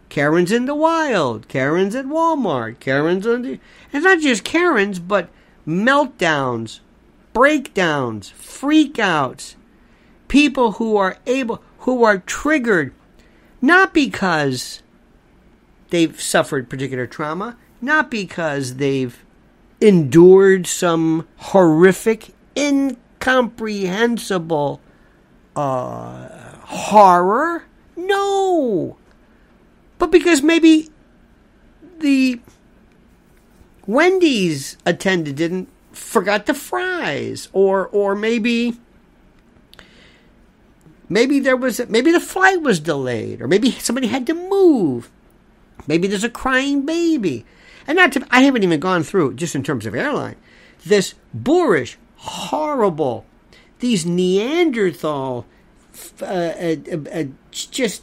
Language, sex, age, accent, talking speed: English, male, 50-69, American, 100 wpm